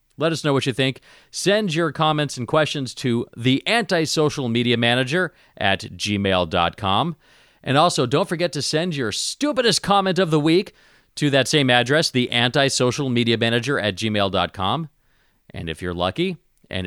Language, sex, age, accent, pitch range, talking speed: English, male, 40-59, American, 95-150 Hz, 160 wpm